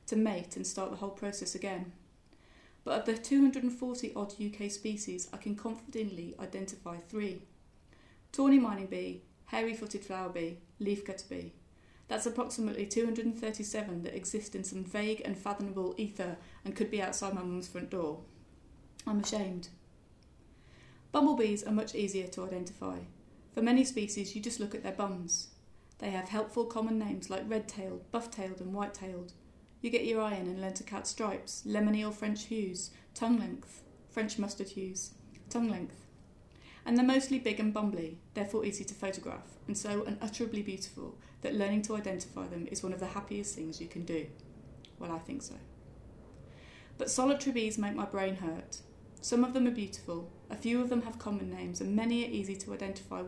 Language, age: English, 30-49